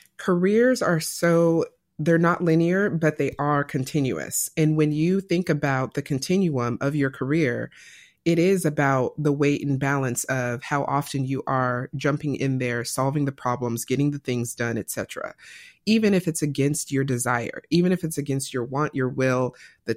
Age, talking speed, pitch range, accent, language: 30-49, 175 wpm, 130-155 Hz, American, English